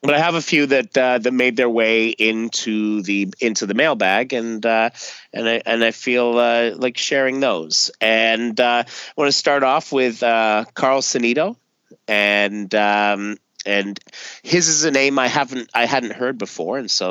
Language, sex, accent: English, male, American